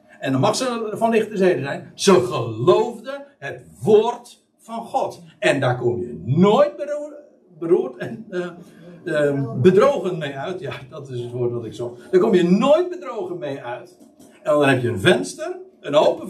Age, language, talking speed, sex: 60-79, Dutch, 185 wpm, male